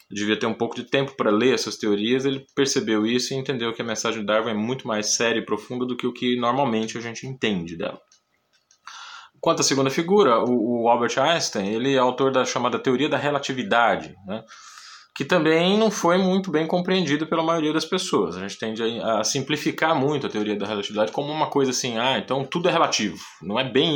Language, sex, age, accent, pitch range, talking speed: Portuguese, male, 20-39, Brazilian, 110-155 Hz, 210 wpm